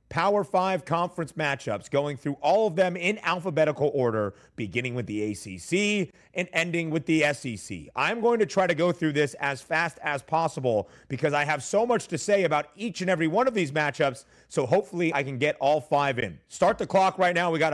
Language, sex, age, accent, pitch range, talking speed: English, male, 30-49, American, 140-180 Hz, 215 wpm